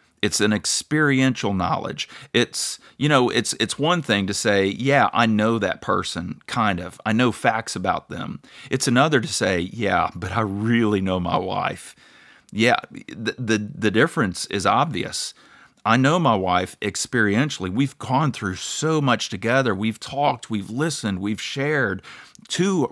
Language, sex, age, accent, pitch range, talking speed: English, male, 40-59, American, 105-140 Hz, 160 wpm